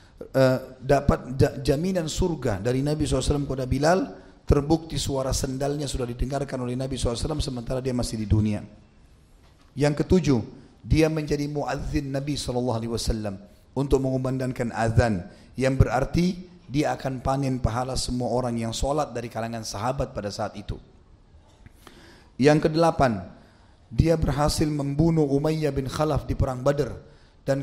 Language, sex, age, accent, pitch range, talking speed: Indonesian, male, 30-49, native, 115-145 Hz, 130 wpm